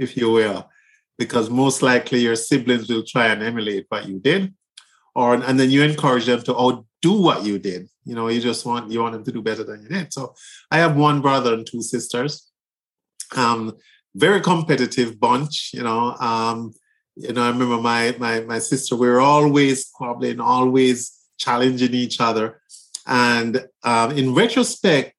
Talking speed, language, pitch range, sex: 180 wpm, English, 115-135 Hz, male